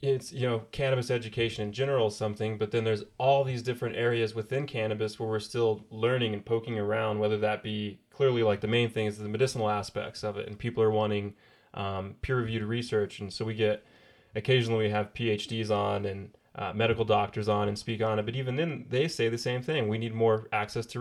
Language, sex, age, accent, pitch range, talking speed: English, male, 20-39, American, 105-115 Hz, 215 wpm